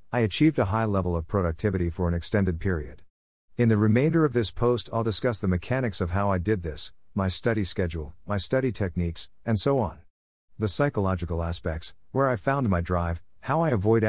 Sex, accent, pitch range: male, American, 85-115 Hz